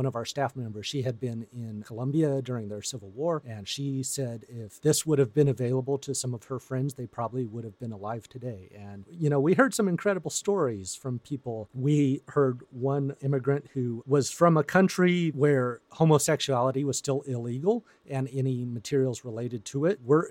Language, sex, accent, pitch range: English, male, American, 115-145 Hz